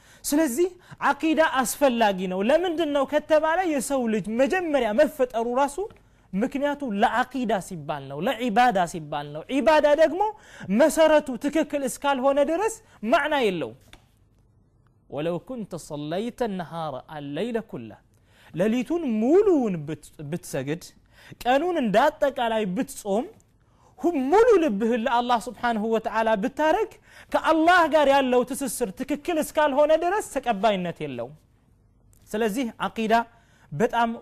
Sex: male